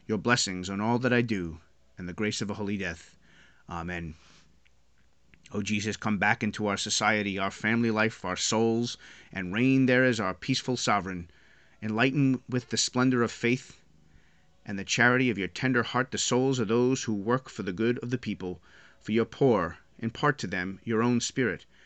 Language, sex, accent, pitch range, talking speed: English, male, American, 100-125 Hz, 190 wpm